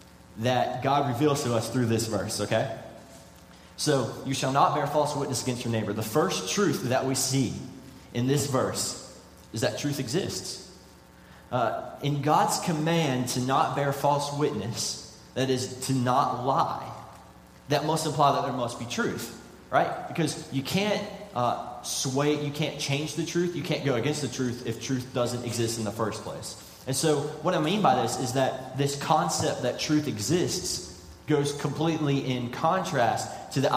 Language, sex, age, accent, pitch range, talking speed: English, male, 20-39, American, 120-150 Hz, 175 wpm